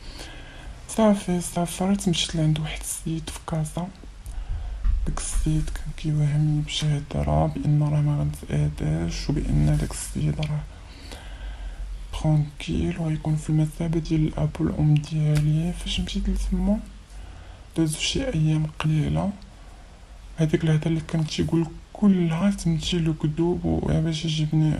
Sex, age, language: male, 20-39, Arabic